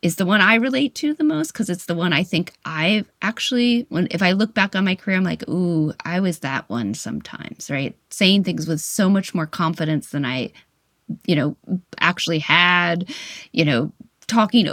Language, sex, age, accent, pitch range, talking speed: English, female, 30-49, American, 165-225 Hz, 200 wpm